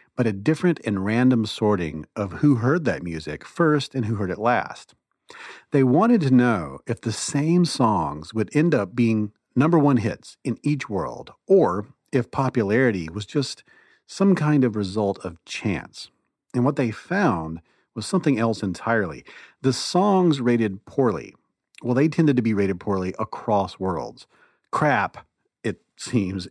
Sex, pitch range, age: male, 100-140 Hz, 40-59